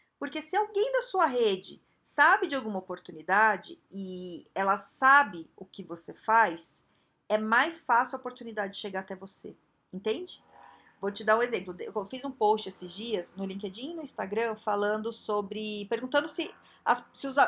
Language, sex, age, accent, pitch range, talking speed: Portuguese, female, 40-59, Brazilian, 210-335 Hz, 160 wpm